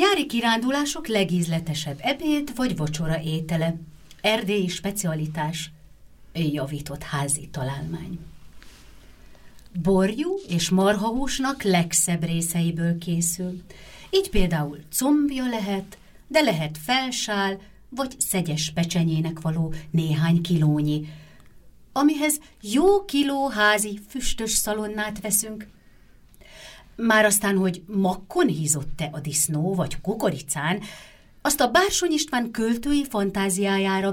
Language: Hungarian